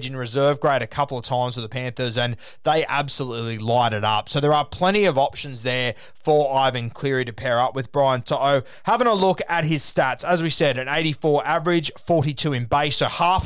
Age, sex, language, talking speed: 20-39, male, English, 220 wpm